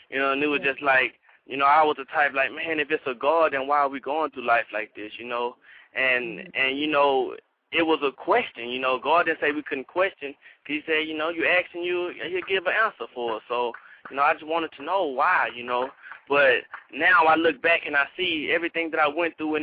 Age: 20-39